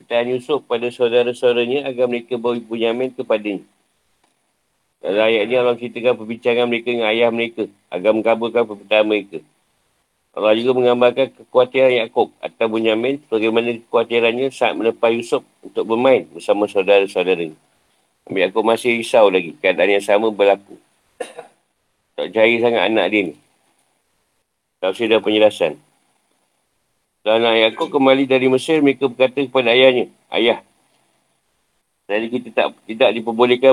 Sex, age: male, 50-69